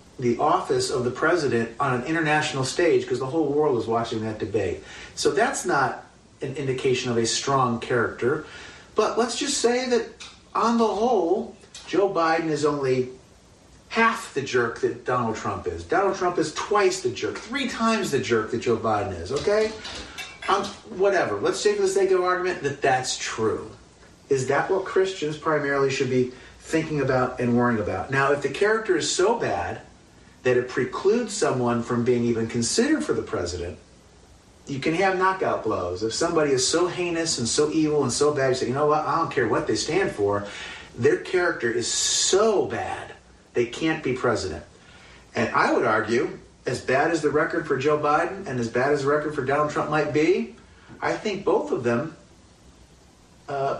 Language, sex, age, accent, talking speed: English, male, 40-59, American, 185 wpm